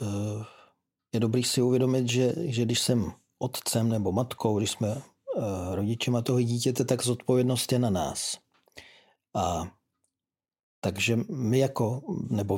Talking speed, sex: 130 wpm, male